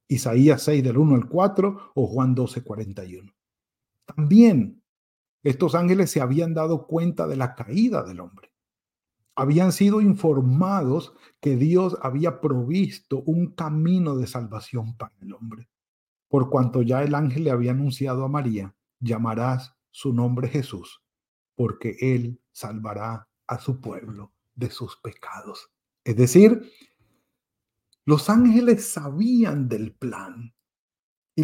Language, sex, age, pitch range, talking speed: Spanish, male, 50-69, 125-170 Hz, 130 wpm